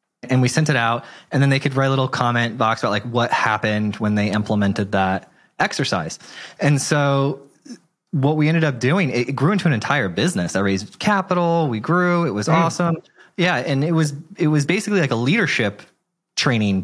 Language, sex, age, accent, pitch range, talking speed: English, male, 20-39, American, 115-165 Hz, 195 wpm